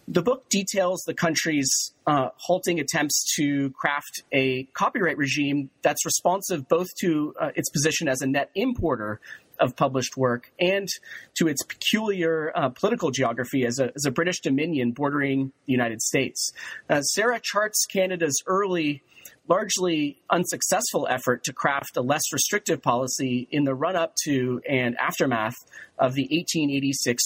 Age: 30-49